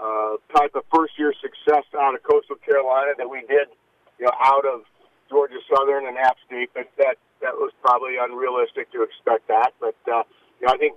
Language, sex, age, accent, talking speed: English, male, 50-69, American, 195 wpm